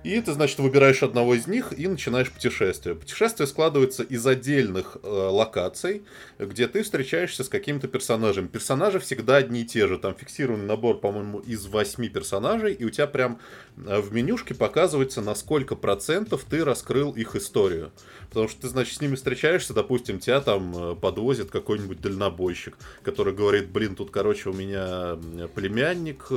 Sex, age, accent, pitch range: male, 20-39, native, 100-140 Hz